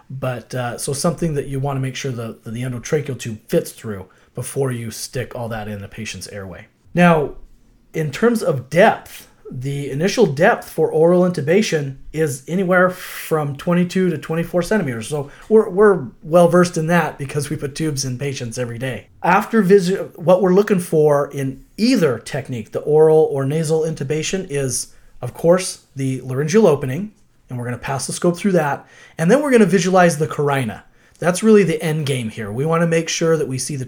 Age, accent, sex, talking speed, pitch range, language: 30-49, American, male, 195 wpm, 125-175 Hz, English